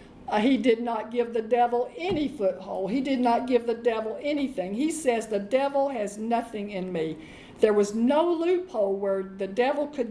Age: 50-69